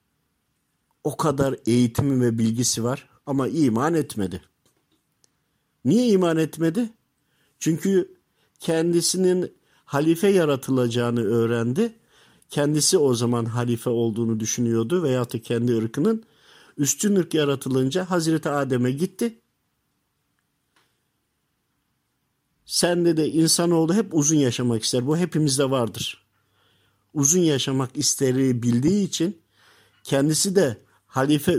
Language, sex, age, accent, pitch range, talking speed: Turkish, male, 50-69, native, 120-170 Hz, 100 wpm